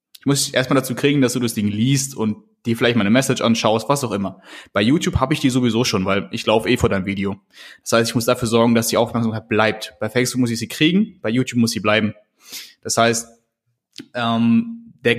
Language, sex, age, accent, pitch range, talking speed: German, male, 20-39, German, 110-130 Hz, 235 wpm